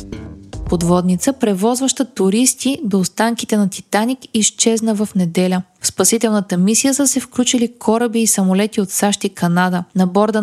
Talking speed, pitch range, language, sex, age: 145 wpm, 190-235 Hz, Bulgarian, female, 20-39